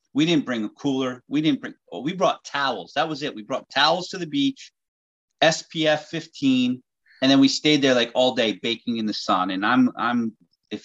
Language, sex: English, male